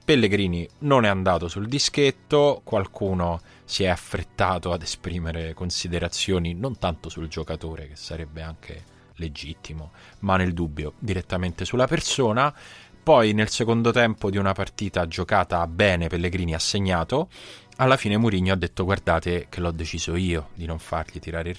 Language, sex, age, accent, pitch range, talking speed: Italian, male, 20-39, native, 85-100 Hz, 150 wpm